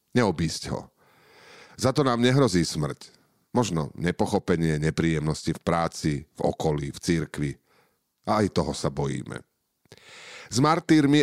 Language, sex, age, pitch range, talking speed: Slovak, male, 40-59, 85-115 Hz, 125 wpm